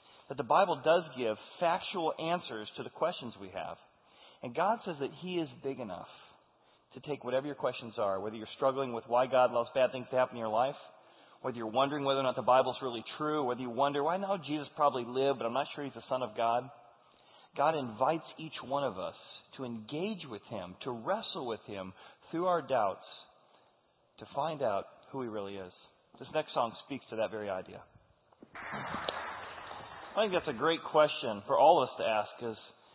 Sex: male